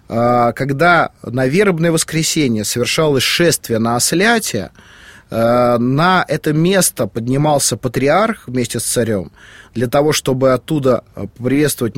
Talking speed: 105 wpm